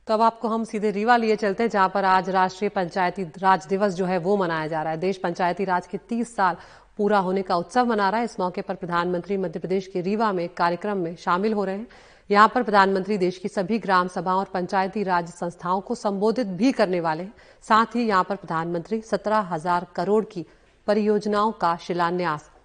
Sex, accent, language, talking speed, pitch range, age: female, native, Hindi, 210 wpm, 180-210 Hz, 40-59